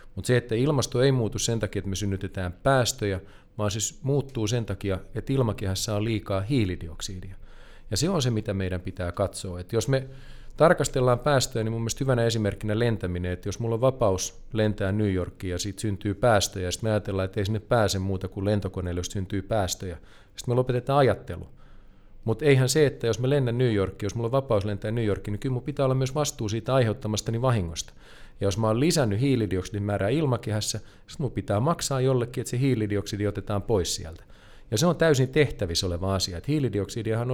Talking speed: 200 wpm